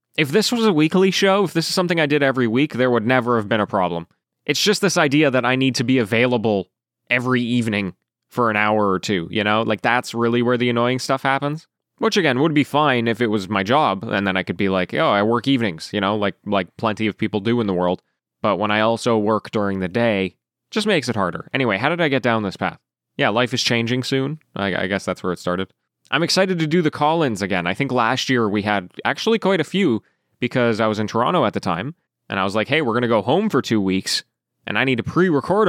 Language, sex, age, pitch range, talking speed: English, male, 20-39, 110-150 Hz, 260 wpm